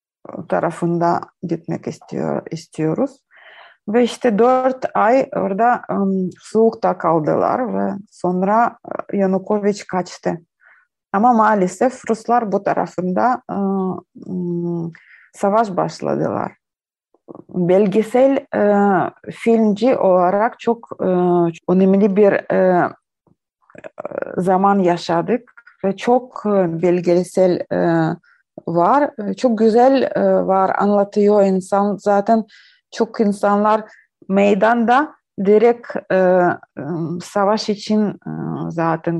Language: Turkish